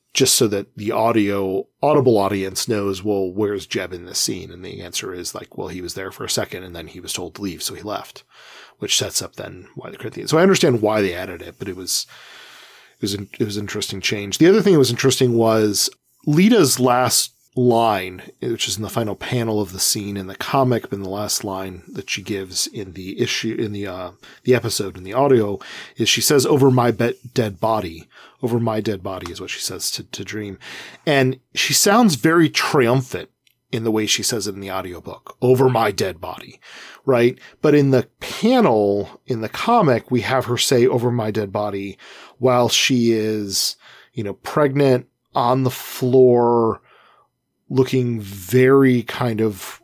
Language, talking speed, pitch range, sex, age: English, 200 wpm, 100-125 Hz, male, 40-59